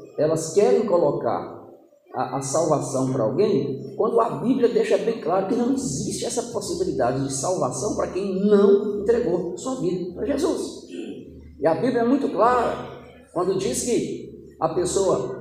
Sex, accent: male, Brazilian